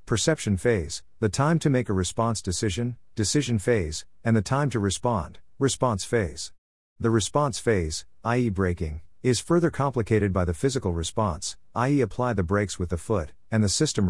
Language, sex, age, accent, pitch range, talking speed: English, male, 50-69, American, 90-120 Hz, 170 wpm